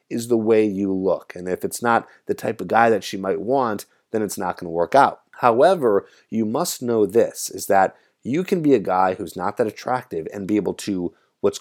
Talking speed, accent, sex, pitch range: 235 wpm, American, male, 95-125 Hz